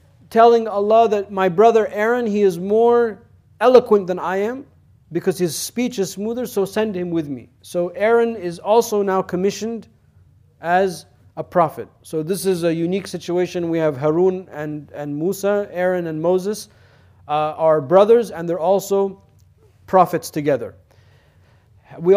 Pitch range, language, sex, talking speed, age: 150-200 Hz, English, male, 150 wpm, 40-59